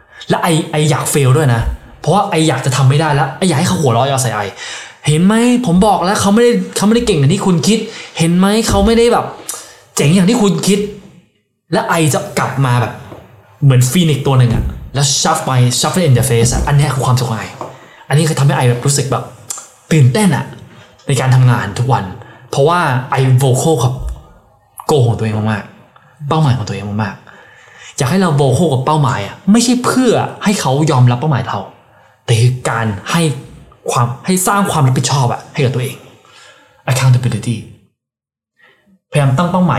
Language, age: Thai, 20-39